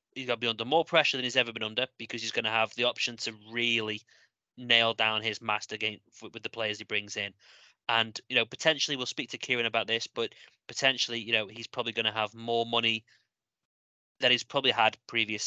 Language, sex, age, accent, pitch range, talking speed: English, male, 20-39, British, 110-130 Hz, 225 wpm